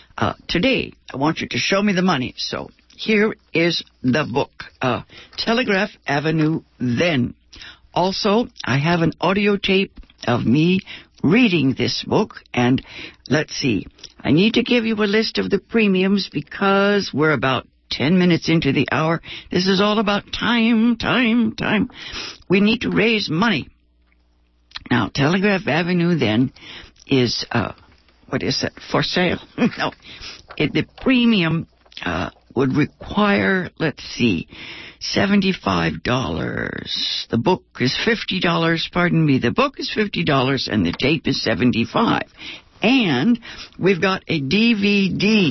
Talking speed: 135 wpm